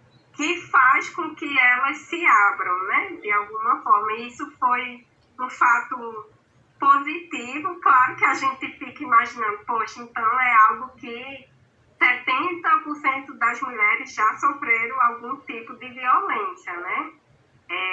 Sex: female